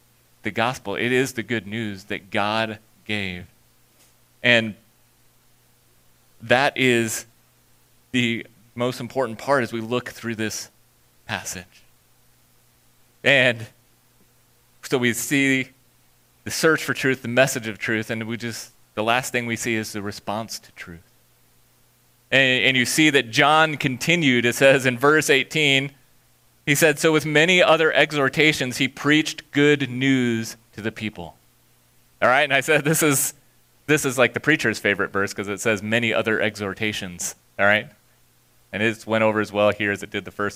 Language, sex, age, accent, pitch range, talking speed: English, male, 30-49, American, 95-140 Hz, 160 wpm